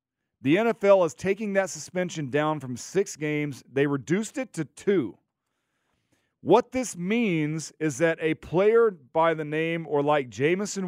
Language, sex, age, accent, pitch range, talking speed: English, male, 40-59, American, 130-170 Hz, 155 wpm